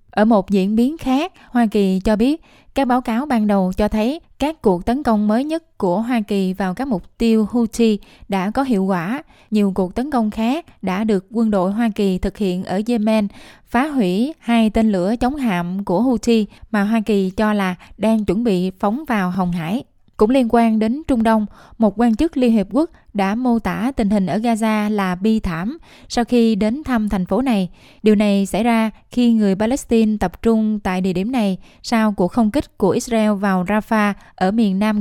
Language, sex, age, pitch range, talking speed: Vietnamese, female, 20-39, 200-240 Hz, 210 wpm